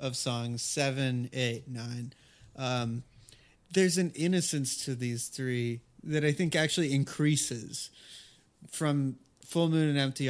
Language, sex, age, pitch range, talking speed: English, male, 30-49, 120-145 Hz, 130 wpm